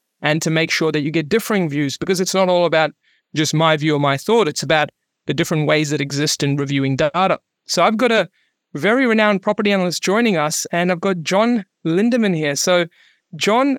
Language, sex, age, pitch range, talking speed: English, male, 30-49, 155-190 Hz, 210 wpm